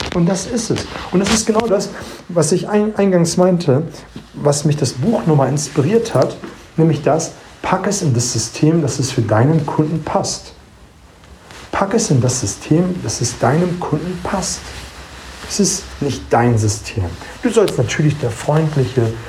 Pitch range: 120-165 Hz